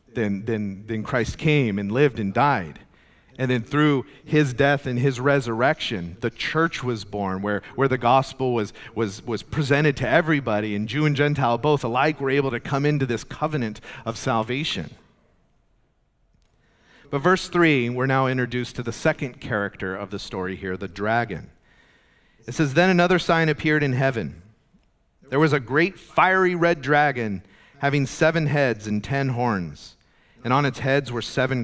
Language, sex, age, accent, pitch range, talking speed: English, male, 40-59, American, 115-150 Hz, 170 wpm